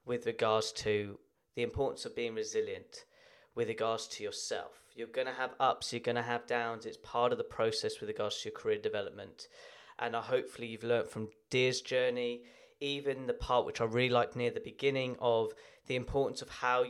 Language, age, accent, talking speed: English, 10-29, British, 200 wpm